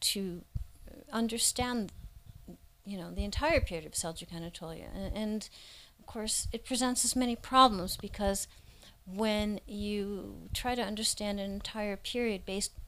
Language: English